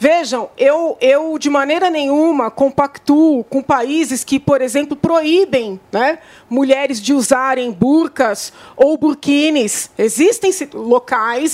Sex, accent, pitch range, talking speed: female, Brazilian, 265-335 Hz, 115 wpm